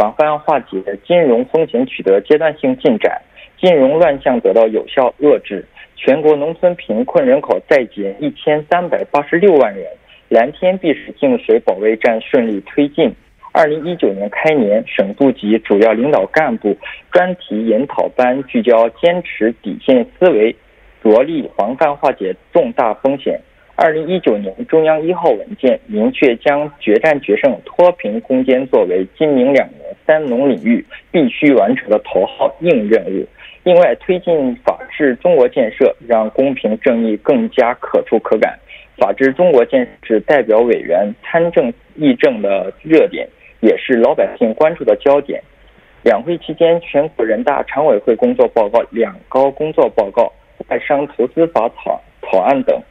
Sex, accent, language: male, Chinese, Korean